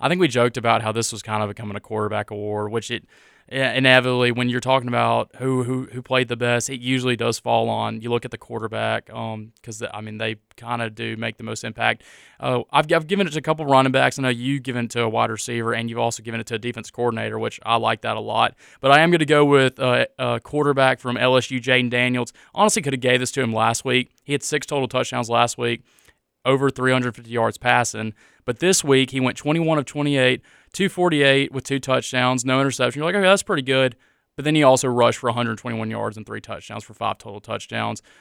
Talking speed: 240 wpm